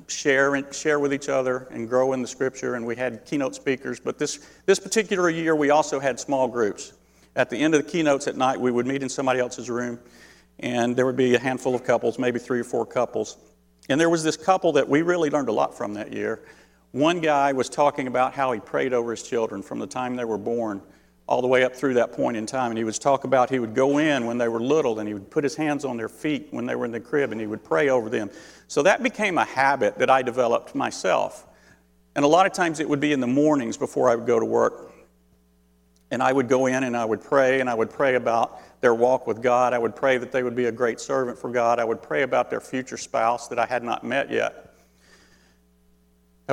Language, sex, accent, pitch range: English, male, American, 115-140 Hz